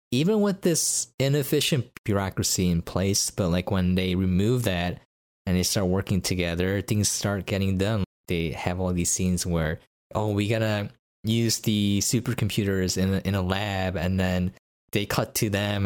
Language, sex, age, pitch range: English, male, 20-39, 90-115 Hz